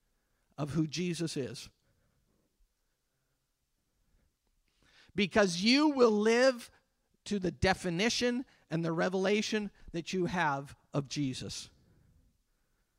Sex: male